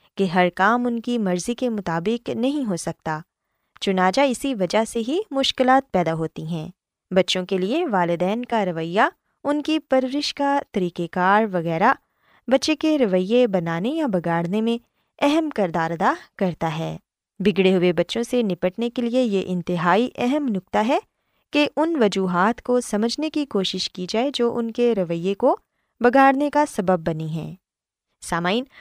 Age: 20-39